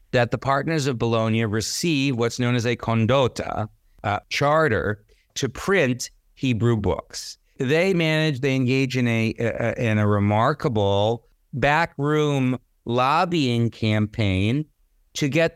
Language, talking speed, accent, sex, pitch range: English, 125 wpm, American, male, 110-135 Hz